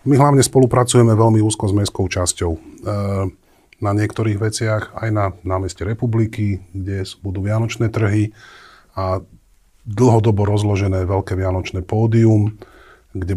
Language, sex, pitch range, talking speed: Slovak, male, 95-115 Hz, 125 wpm